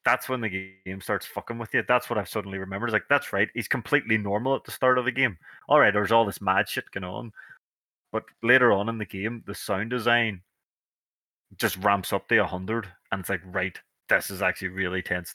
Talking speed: 225 wpm